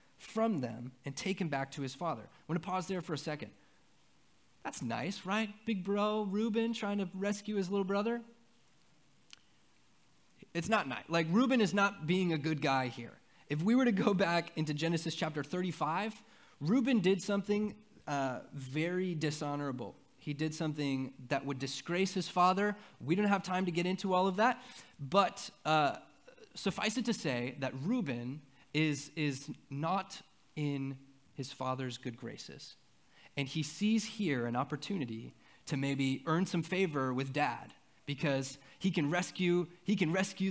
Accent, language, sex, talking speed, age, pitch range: American, English, male, 165 wpm, 30-49, 140-200 Hz